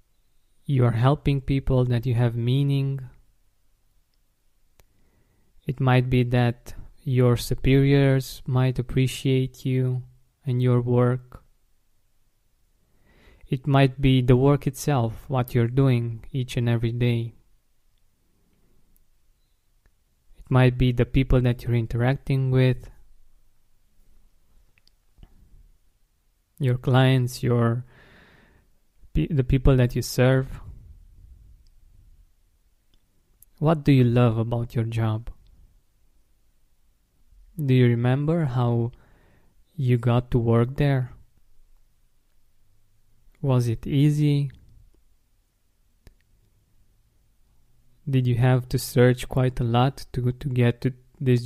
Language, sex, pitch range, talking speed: English, male, 110-130 Hz, 95 wpm